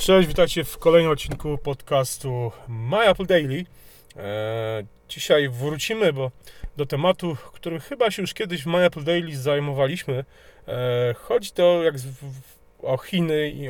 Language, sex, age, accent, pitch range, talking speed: Polish, male, 30-49, native, 120-145 Hz, 130 wpm